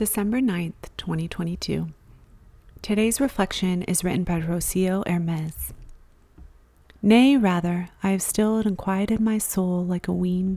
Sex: female